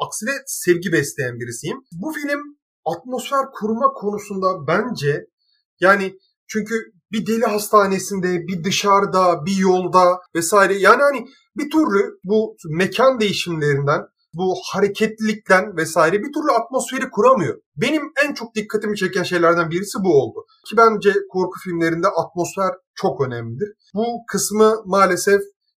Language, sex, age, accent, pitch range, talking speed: Turkish, male, 30-49, native, 165-220 Hz, 125 wpm